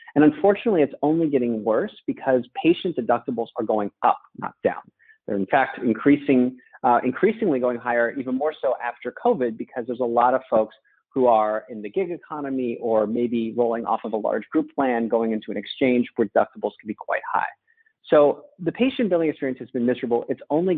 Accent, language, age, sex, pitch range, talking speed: American, English, 40-59, male, 130-200 Hz, 195 wpm